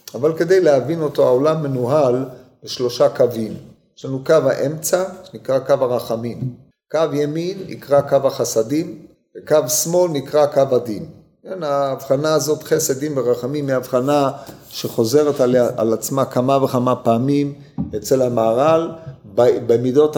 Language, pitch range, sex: Hebrew, 130-165 Hz, male